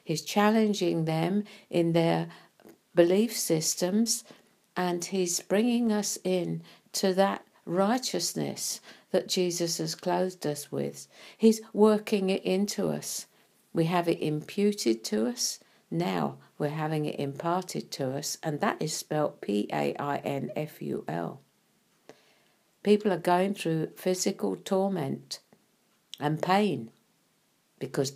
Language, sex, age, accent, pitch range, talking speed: English, female, 60-79, British, 150-195 Hz, 115 wpm